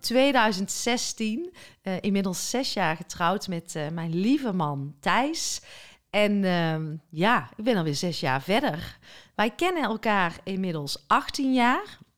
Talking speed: 135 wpm